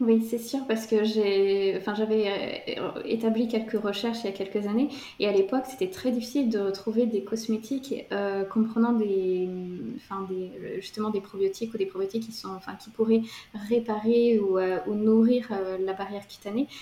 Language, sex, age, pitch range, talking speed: French, female, 20-39, 195-230 Hz, 170 wpm